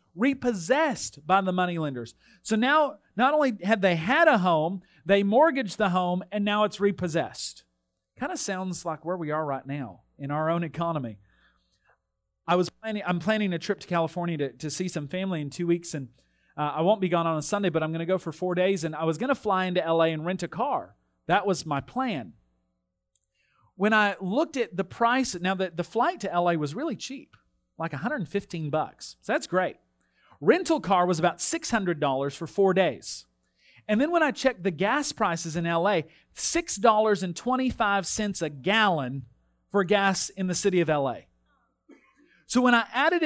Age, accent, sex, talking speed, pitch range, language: 40-59, American, male, 190 wpm, 165-225 Hz, English